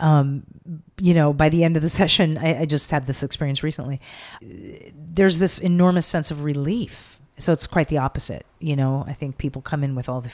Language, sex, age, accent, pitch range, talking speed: English, female, 40-59, American, 135-170 Hz, 215 wpm